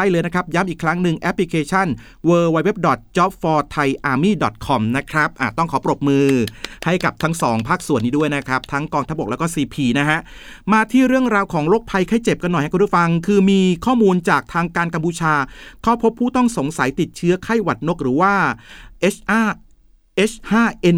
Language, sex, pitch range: Thai, male, 140-185 Hz